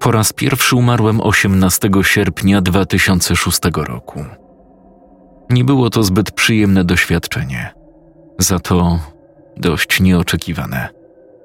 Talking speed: 95 wpm